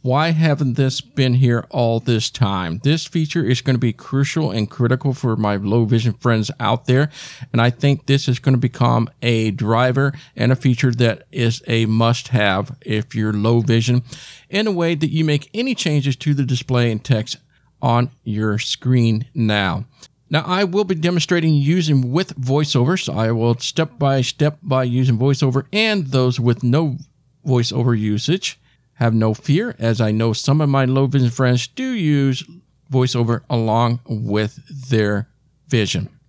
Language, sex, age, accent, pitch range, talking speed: English, male, 50-69, American, 120-155 Hz, 175 wpm